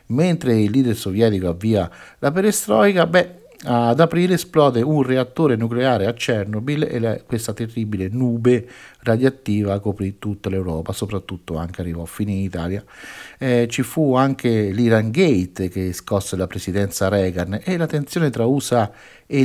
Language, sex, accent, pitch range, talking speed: Italian, male, native, 100-135 Hz, 150 wpm